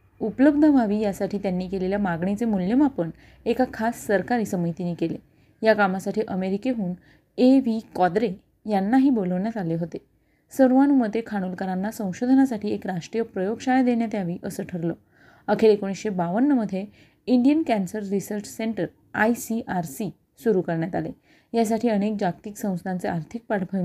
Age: 30-49